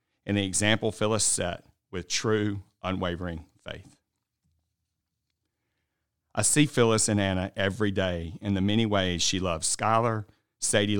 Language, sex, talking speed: English, male, 130 wpm